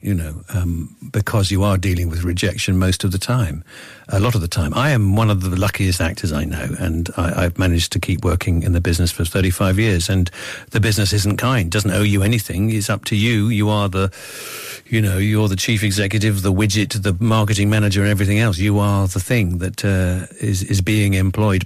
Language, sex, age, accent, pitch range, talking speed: English, male, 50-69, British, 95-105 Hz, 220 wpm